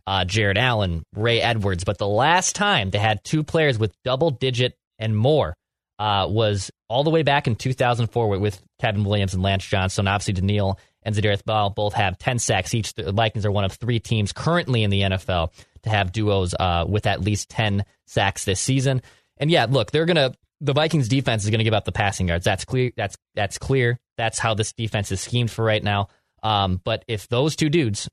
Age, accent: 20-39, American